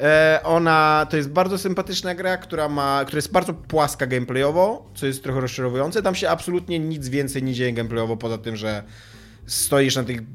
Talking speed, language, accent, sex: 180 wpm, Polish, native, male